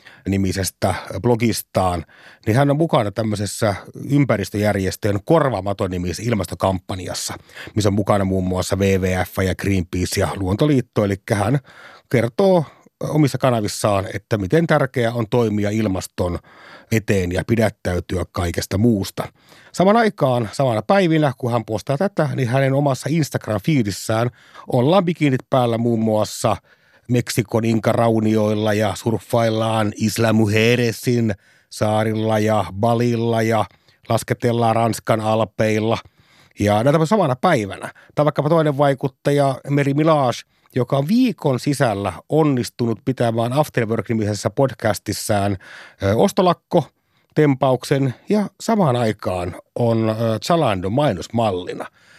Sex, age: male, 30-49